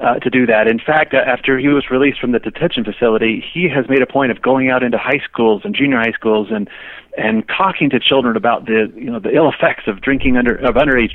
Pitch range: 115-145 Hz